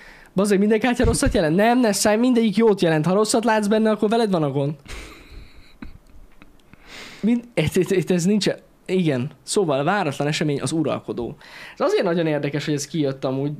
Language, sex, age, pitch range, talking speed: Hungarian, male, 10-29, 150-210 Hz, 175 wpm